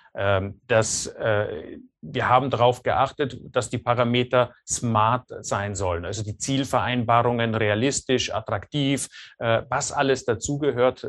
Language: German